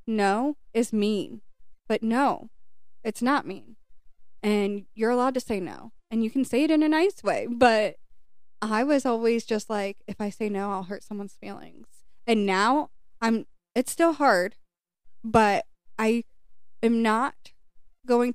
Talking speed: 155 wpm